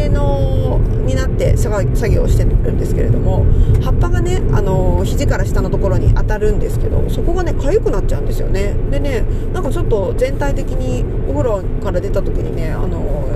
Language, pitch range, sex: Japanese, 105-120 Hz, female